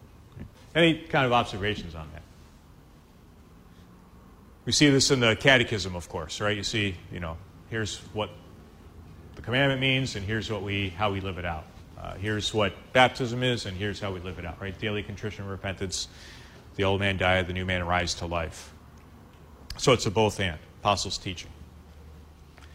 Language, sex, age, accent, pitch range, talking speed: English, male, 40-59, American, 85-120 Hz, 170 wpm